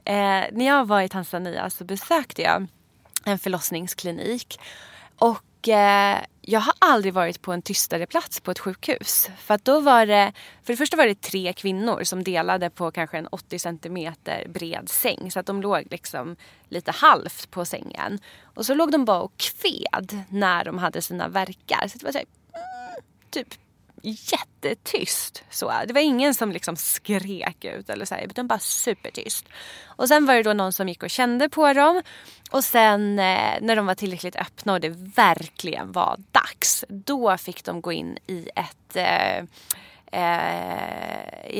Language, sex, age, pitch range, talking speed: English, female, 20-39, 180-245 Hz, 165 wpm